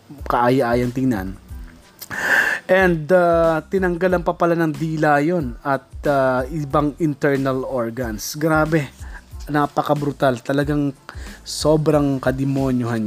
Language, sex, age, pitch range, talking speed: Filipino, male, 20-39, 130-165 Hz, 90 wpm